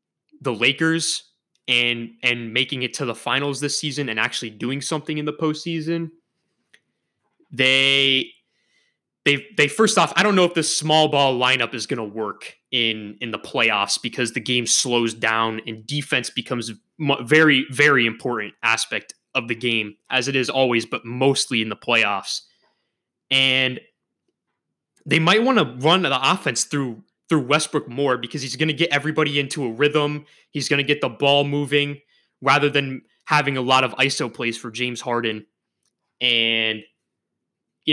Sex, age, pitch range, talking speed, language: male, 20-39, 120-155 Hz, 165 wpm, English